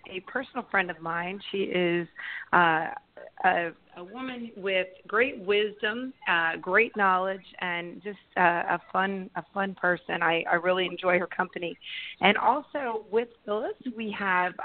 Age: 40-59